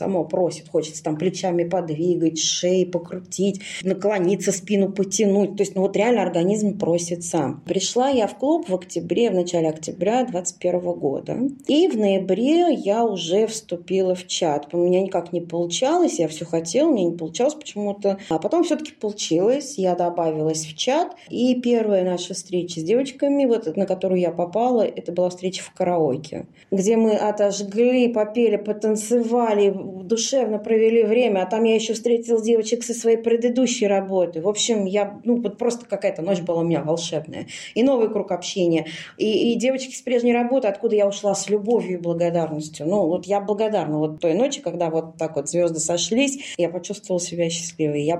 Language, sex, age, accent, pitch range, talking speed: Russian, female, 20-39, native, 170-225 Hz, 170 wpm